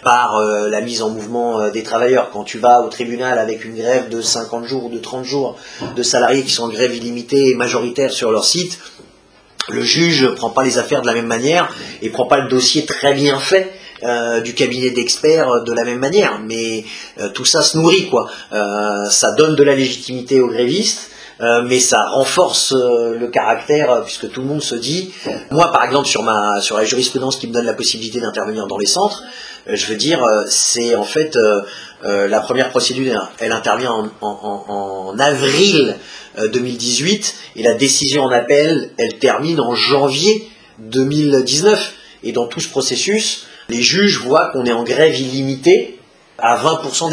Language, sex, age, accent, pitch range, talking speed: French, male, 30-49, French, 115-140 Hz, 190 wpm